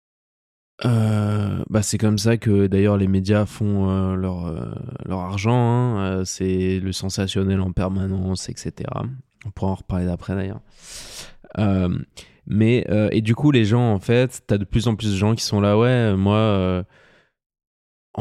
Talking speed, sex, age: 175 wpm, male, 20-39